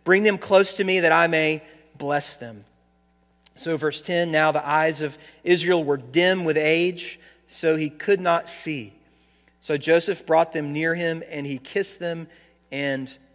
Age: 40-59